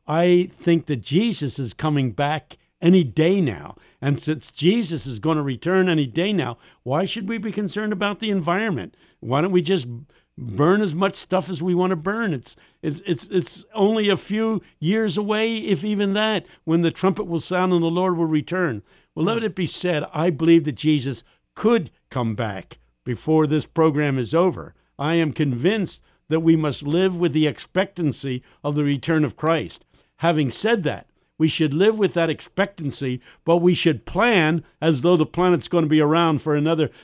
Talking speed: 190 wpm